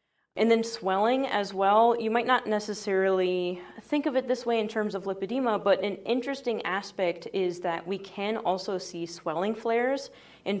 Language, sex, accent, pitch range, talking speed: English, female, American, 175-220 Hz, 175 wpm